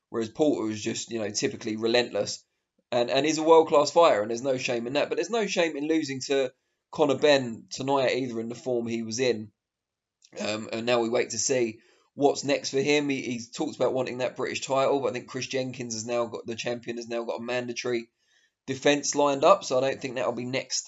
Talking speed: 230 wpm